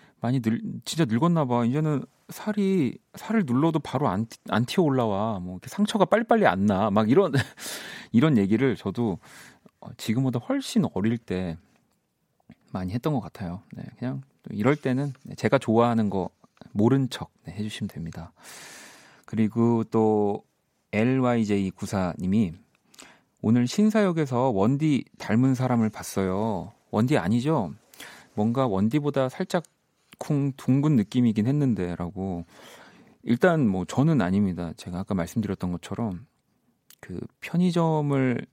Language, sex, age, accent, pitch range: Korean, male, 40-59, native, 105-140 Hz